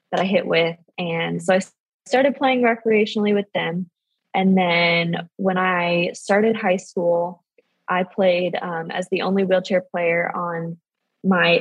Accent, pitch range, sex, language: American, 175-200 Hz, female, English